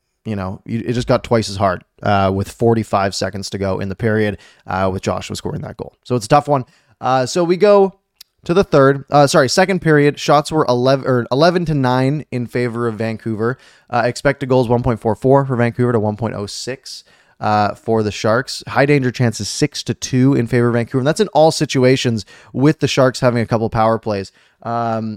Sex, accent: male, American